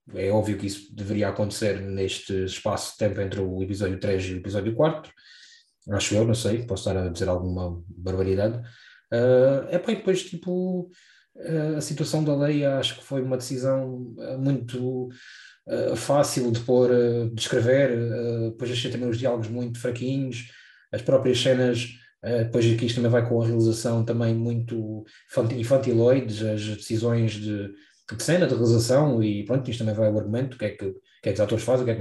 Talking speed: 175 wpm